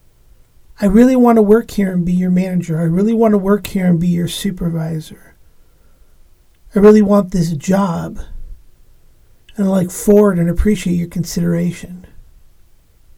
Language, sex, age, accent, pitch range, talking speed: English, male, 50-69, American, 175-235 Hz, 150 wpm